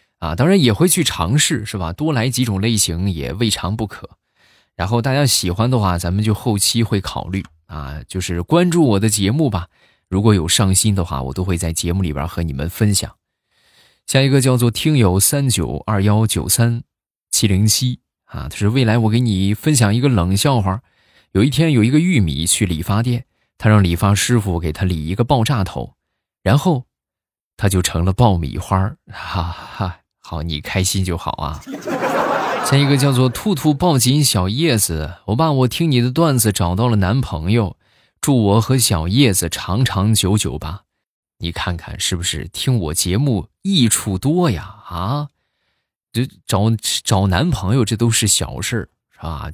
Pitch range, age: 90-125 Hz, 20-39